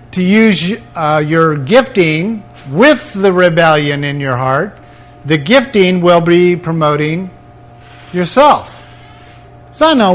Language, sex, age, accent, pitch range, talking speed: English, male, 50-69, American, 125-185 Hz, 120 wpm